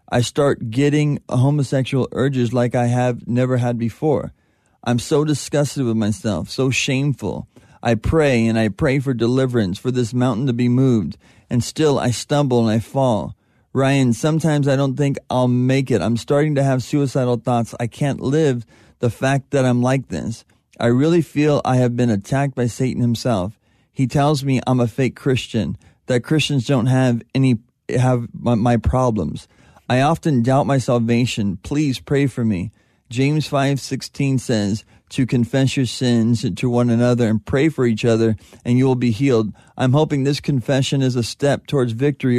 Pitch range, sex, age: 120-135 Hz, male, 30-49